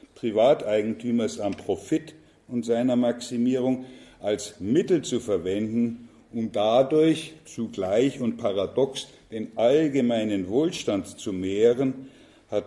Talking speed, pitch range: 100 wpm, 110-130 Hz